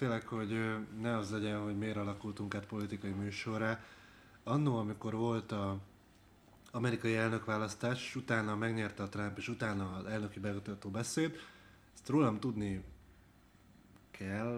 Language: Hungarian